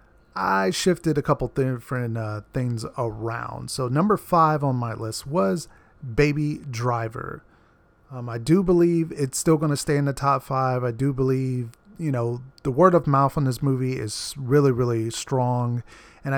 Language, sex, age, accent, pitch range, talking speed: English, male, 30-49, American, 120-155 Hz, 170 wpm